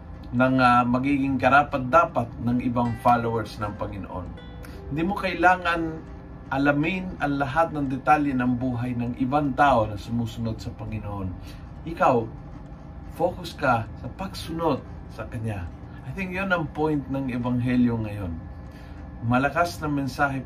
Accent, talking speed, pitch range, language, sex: native, 130 wpm, 100-140 Hz, Filipino, male